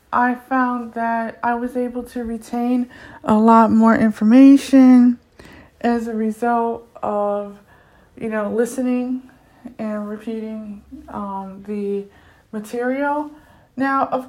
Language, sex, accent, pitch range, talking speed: English, female, American, 220-265 Hz, 110 wpm